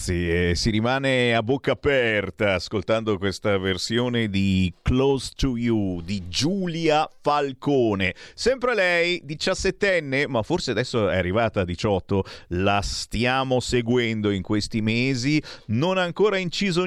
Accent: native